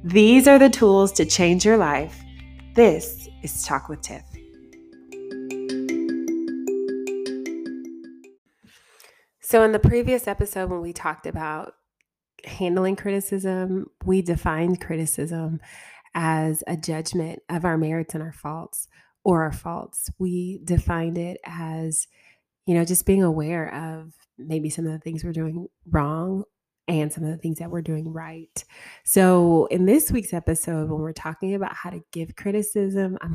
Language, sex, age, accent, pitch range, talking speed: English, female, 20-39, American, 155-185 Hz, 145 wpm